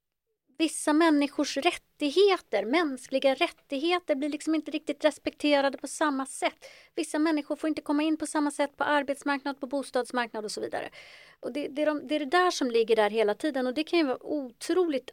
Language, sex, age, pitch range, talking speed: Swedish, female, 30-49, 225-300 Hz, 195 wpm